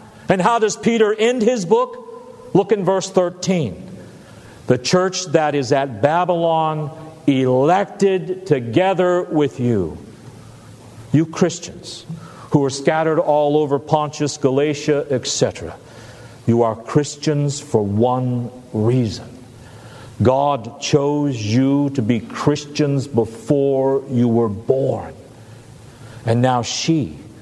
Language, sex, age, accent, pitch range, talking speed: English, male, 50-69, American, 115-150 Hz, 110 wpm